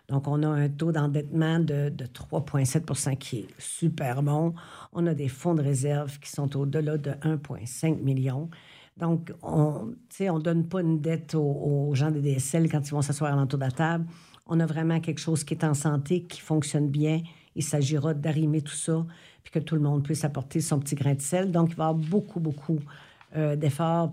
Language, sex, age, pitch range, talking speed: French, female, 50-69, 140-160 Hz, 210 wpm